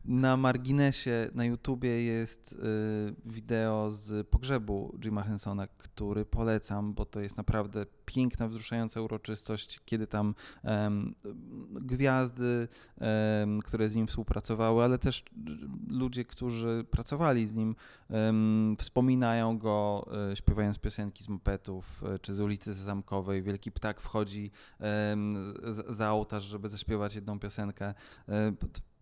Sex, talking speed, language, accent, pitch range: male, 135 wpm, Polish, native, 105-115 Hz